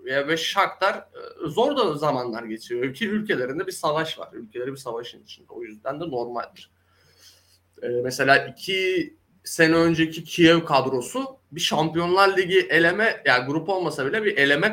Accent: native